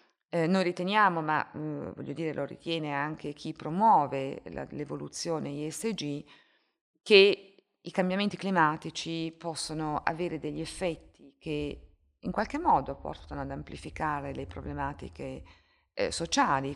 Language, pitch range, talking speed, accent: Italian, 150-185 Hz, 115 wpm, native